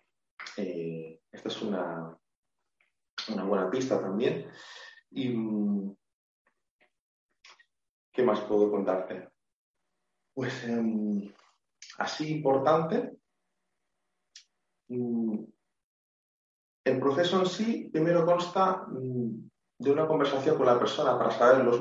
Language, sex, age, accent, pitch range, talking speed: Spanish, male, 30-49, Spanish, 95-130 Hz, 95 wpm